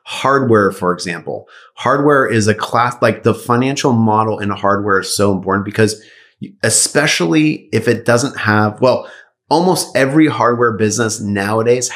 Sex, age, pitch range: male, 30-49, 105-125 Hz